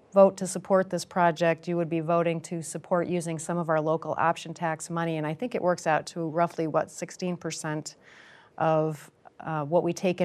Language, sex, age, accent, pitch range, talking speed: English, female, 40-59, American, 160-180 Hz, 200 wpm